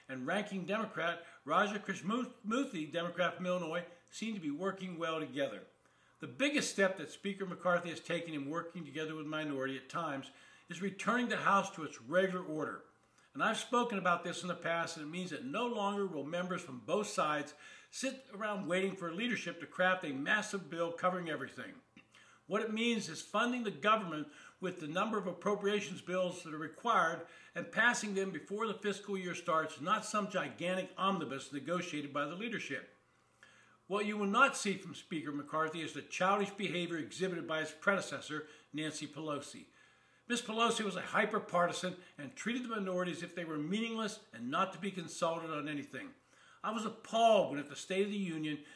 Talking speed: 185 wpm